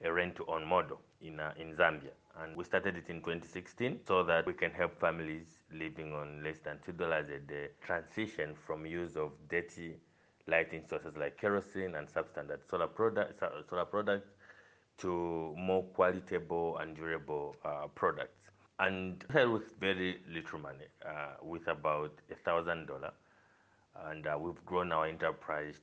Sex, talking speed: male, 150 wpm